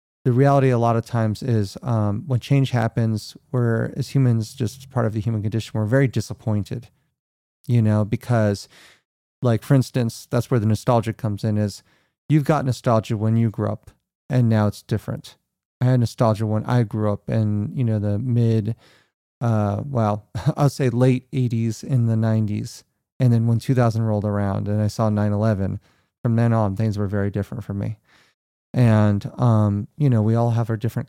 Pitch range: 105-125 Hz